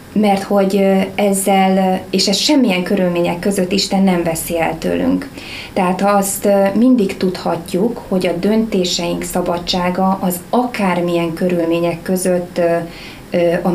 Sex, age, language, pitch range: female, 20-39, Hungarian, 175-195 Hz